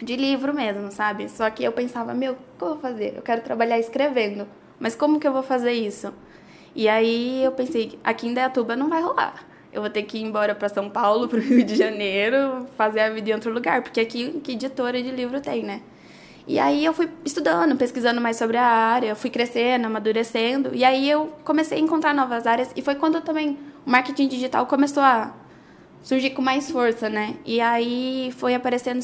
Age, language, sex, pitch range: 10-29, Portuguese, female, 225-275 Hz